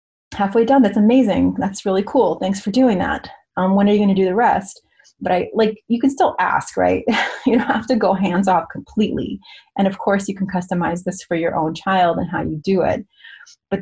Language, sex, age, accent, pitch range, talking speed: English, female, 30-49, American, 175-215 Hz, 230 wpm